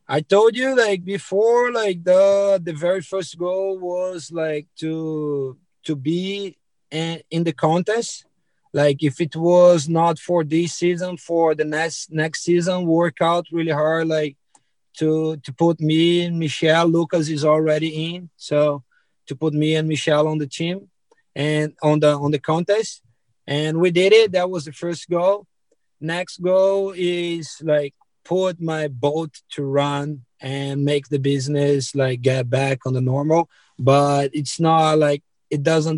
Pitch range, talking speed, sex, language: 145-175 Hz, 160 wpm, male, English